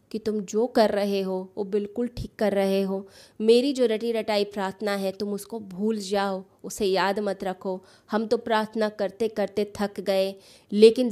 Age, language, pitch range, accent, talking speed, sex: 20-39, Hindi, 195-220 Hz, native, 185 wpm, female